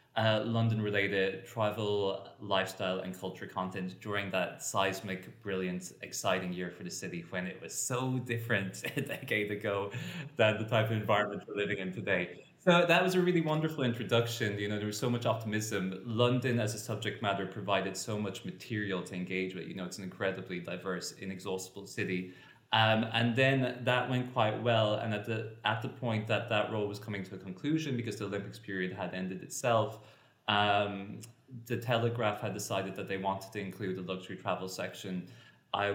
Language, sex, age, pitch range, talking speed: English, male, 20-39, 95-115 Hz, 185 wpm